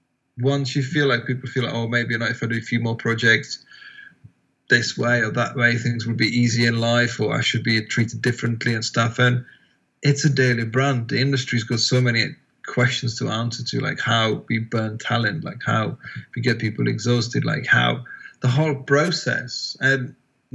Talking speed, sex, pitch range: 195 wpm, male, 115-130 Hz